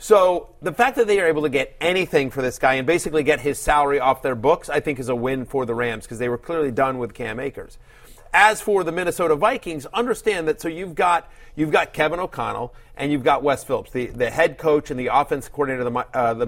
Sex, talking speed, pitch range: male, 250 wpm, 135-170 Hz